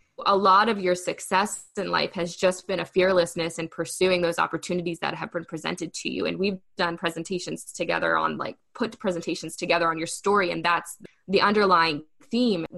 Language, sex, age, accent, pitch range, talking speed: English, female, 20-39, American, 170-205 Hz, 190 wpm